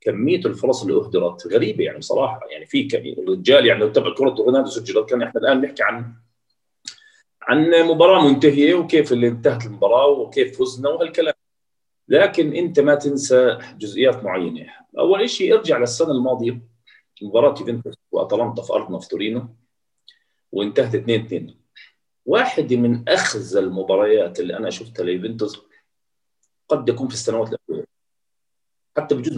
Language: Arabic